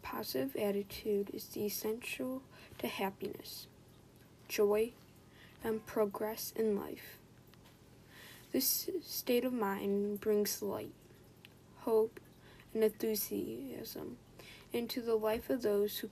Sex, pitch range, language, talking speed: female, 200-240 Hz, English, 95 wpm